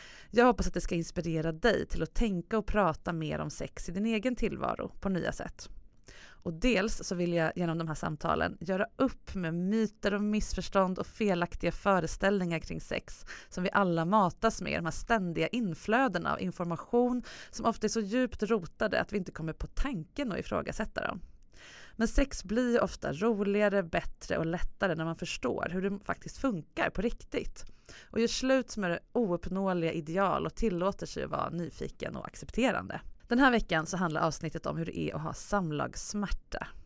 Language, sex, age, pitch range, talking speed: English, female, 30-49, 170-225 Hz, 185 wpm